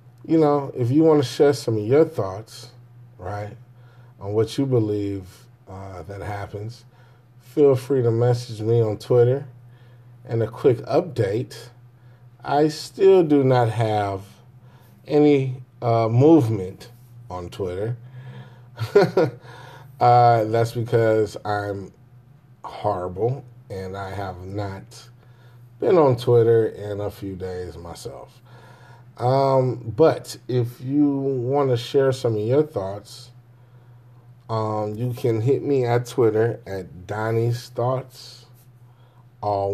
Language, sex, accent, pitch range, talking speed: English, male, American, 110-125 Hz, 120 wpm